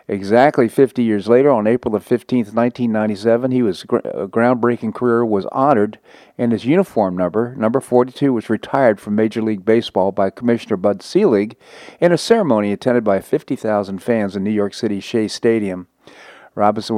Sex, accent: male, American